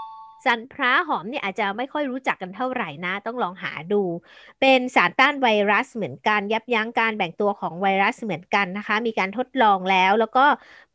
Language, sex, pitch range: Thai, female, 210-270 Hz